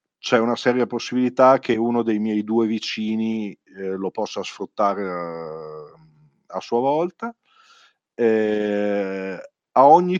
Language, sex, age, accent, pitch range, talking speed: Italian, male, 40-59, native, 105-150 Hz, 125 wpm